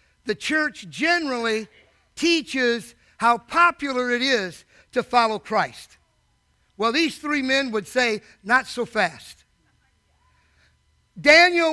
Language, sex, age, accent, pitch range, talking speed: English, male, 50-69, American, 215-285 Hz, 105 wpm